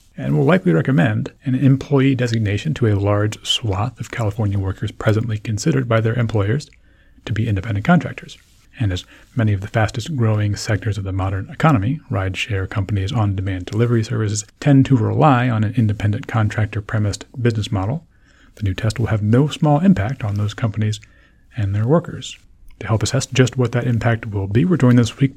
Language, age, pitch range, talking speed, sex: English, 40-59, 105-130 Hz, 175 wpm, male